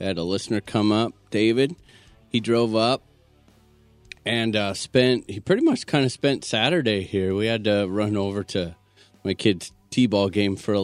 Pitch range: 95-120 Hz